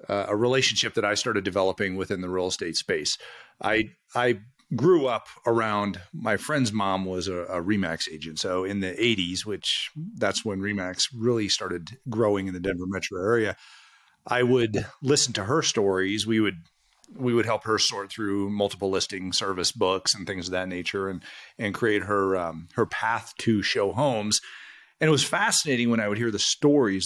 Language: English